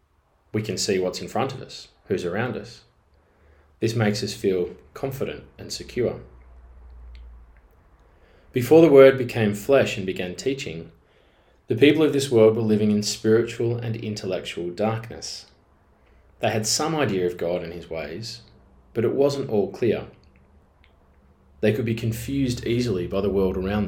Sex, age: male, 20-39